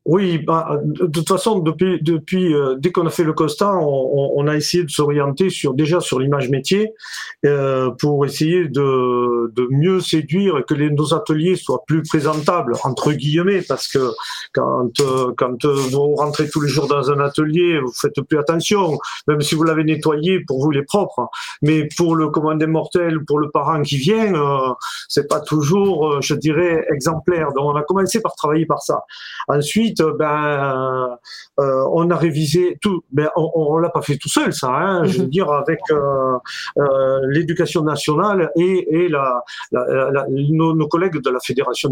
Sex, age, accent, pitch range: male, 40-59, French, 140-170 Hz